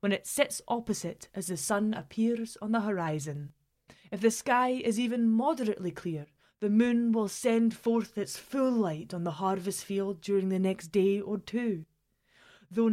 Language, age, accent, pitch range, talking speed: English, 20-39, British, 185-235 Hz, 170 wpm